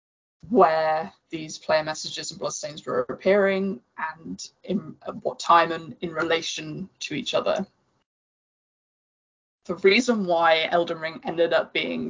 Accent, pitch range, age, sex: British, 165-195 Hz, 20-39, female